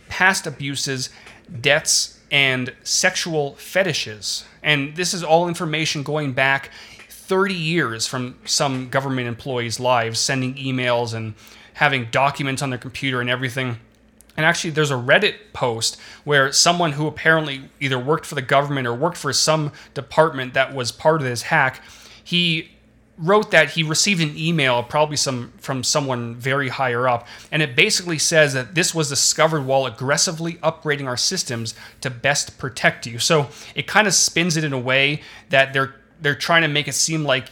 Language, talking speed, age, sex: English, 170 wpm, 30-49, male